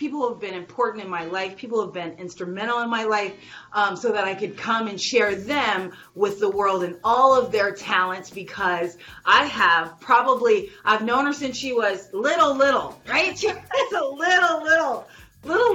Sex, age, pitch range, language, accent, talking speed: female, 30-49, 190-250 Hz, English, American, 185 wpm